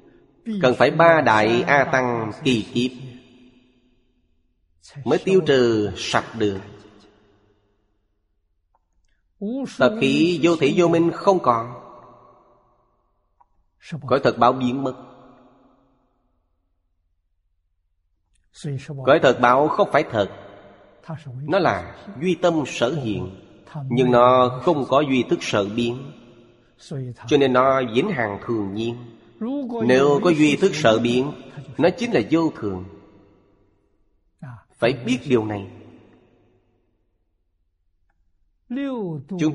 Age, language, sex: 30-49, Vietnamese, male